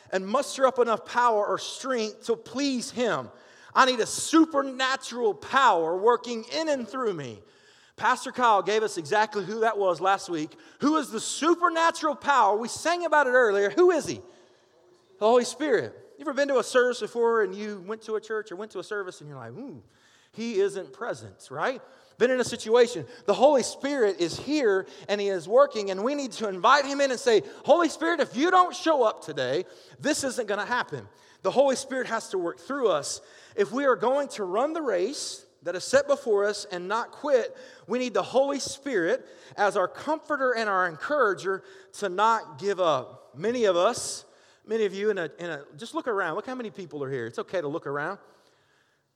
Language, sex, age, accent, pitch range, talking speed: English, male, 30-49, American, 205-285 Hz, 205 wpm